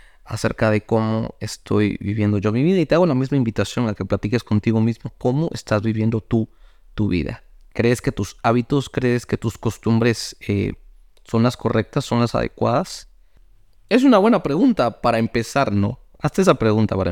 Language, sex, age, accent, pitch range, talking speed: Spanish, male, 30-49, Mexican, 100-125 Hz, 180 wpm